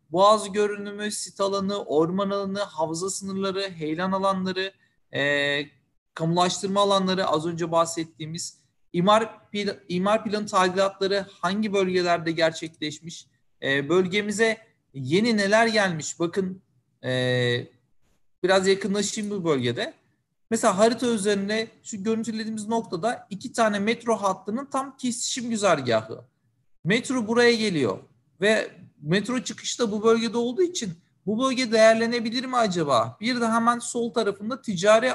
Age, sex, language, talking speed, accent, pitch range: 40-59, male, Turkish, 120 wpm, native, 170-220 Hz